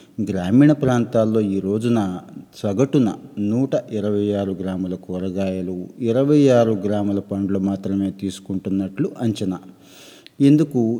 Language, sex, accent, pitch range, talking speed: Telugu, male, native, 100-120 Hz, 100 wpm